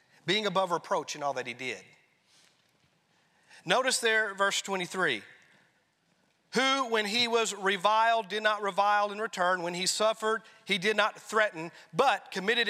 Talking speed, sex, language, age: 145 wpm, male, English, 40-59